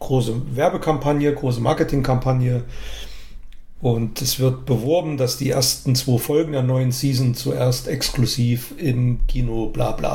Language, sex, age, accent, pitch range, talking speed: German, male, 40-59, German, 125-145 Hz, 130 wpm